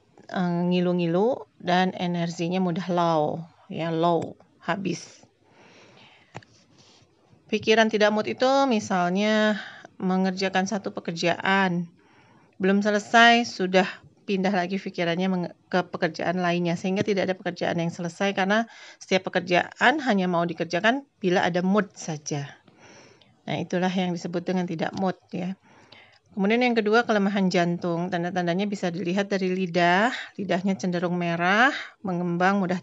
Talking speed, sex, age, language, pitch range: 120 wpm, female, 40-59, Indonesian, 175-210 Hz